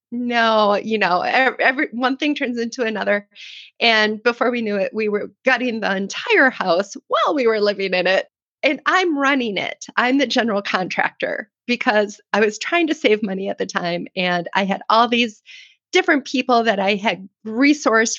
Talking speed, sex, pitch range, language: 185 wpm, female, 205-270 Hz, English